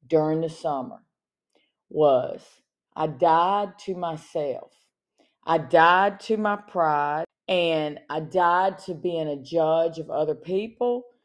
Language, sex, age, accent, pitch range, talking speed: English, female, 40-59, American, 155-205 Hz, 125 wpm